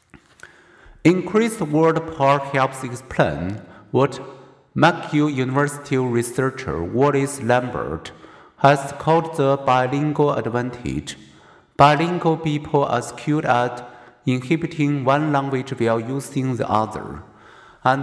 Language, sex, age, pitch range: Chinese, male, 50-69, 120-145 Hz